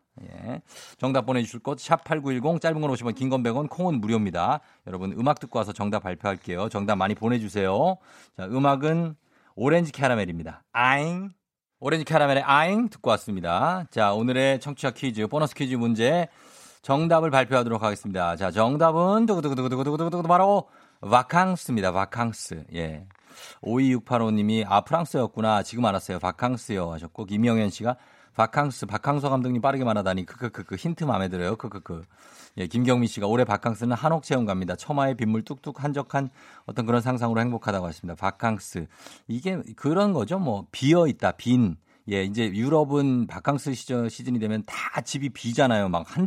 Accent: native